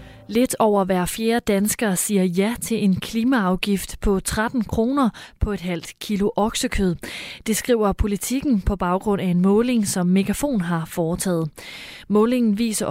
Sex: female